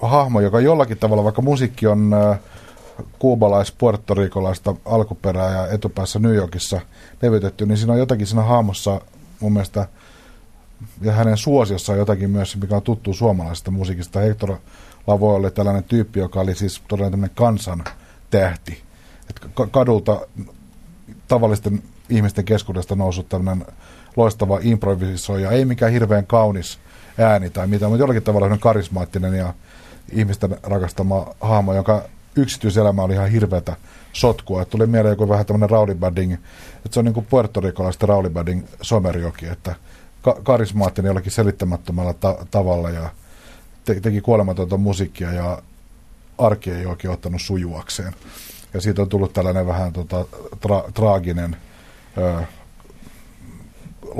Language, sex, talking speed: Finnish, male, 130 wpm